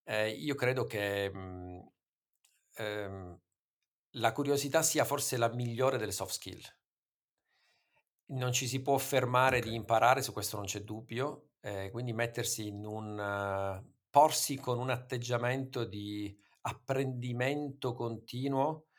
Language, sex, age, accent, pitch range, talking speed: Italian, male, 50-69, native, 105-130 Hz, 125 wpm